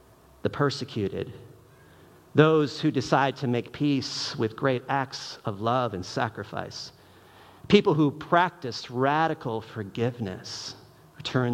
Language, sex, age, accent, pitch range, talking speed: English, male, 50-69, American, 115-160 Hz, 115 wpm